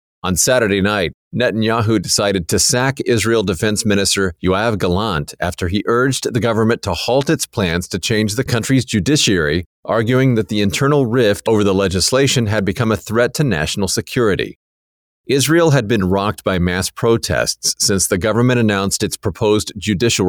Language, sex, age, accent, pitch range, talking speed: English, male, 40-59, American, 95-120 Hz, 165 wpm